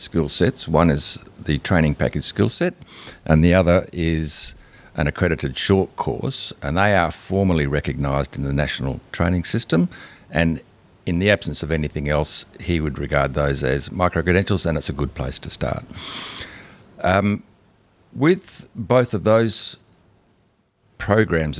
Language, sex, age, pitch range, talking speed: English, male, 50-69, 80-100 Hz, 145 wpm